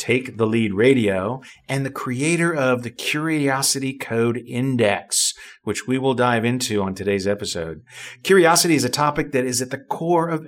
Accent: American